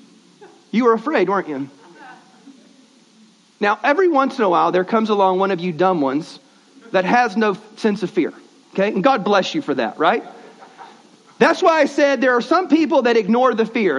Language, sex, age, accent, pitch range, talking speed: English, male, 40-59, American, 205-275 Hz, 195 wpm